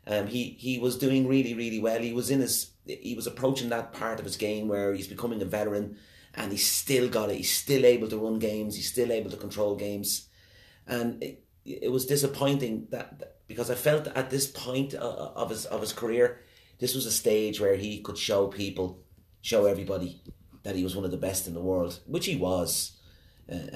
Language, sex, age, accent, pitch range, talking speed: English, male, 30-49, British, 95-120 Hz, 220 wpm